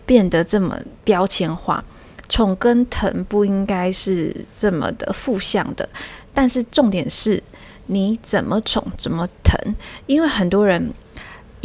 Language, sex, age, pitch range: Chinese, female, 20-39, 180-225 Hz